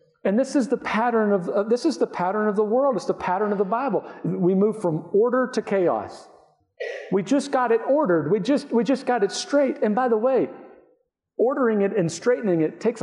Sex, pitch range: male, 160-230 Hz